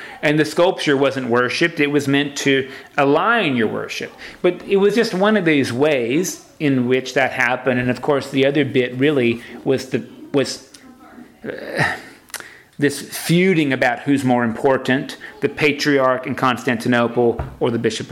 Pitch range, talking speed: 125-150 Hz, 160 wpm